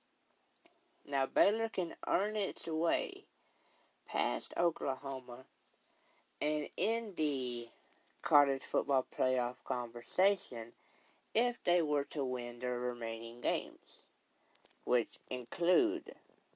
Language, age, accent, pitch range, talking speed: English, 50-69, American, 125-185 Hz, 90 wpm